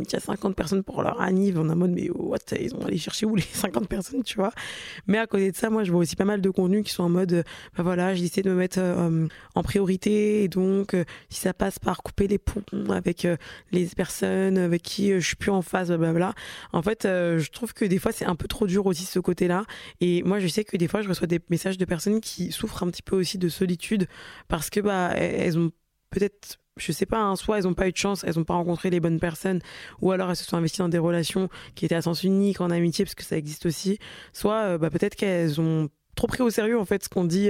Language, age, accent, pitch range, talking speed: French, 20-39, French, 170-195 Hz, 270 wpm